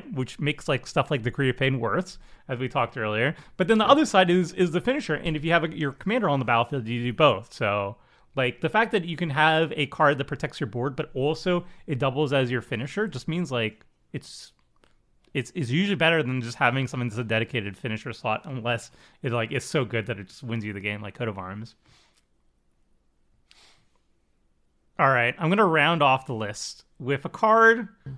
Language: English